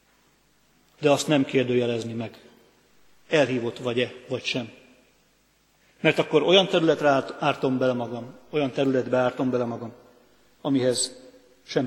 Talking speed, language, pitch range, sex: 115 wpm, Hungarian, 125-150 Hz, male